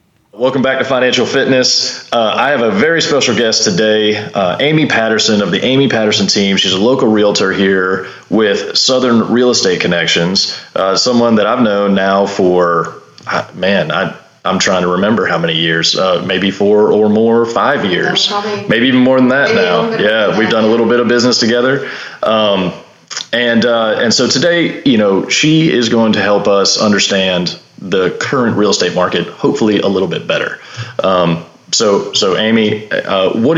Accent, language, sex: American, English, male